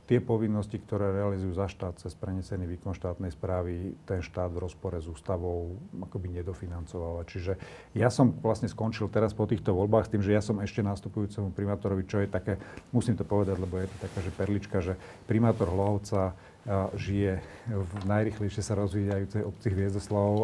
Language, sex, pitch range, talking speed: Slovak, male, 95-105 Hz, 175 wpm